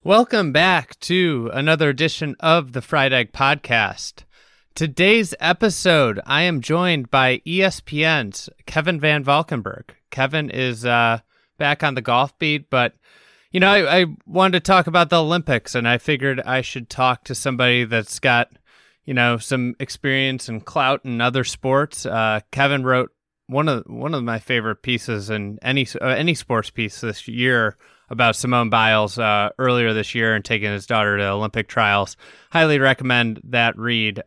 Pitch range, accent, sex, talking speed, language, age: 115-150 Hz, American, male, 165 wpm, English, 30-49